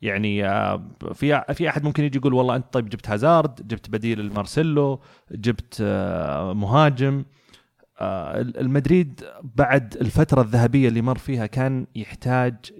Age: 30-49